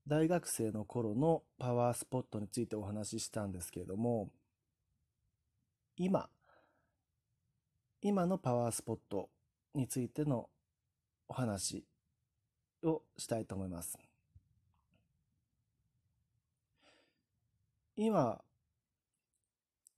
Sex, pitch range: male, 110-150 Hz